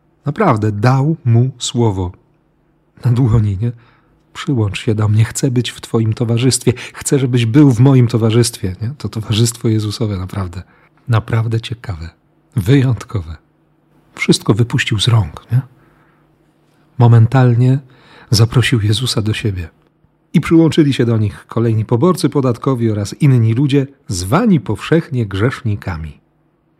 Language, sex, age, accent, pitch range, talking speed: Polish, male, 40-59, native, 105-145 Hz, 120 wpm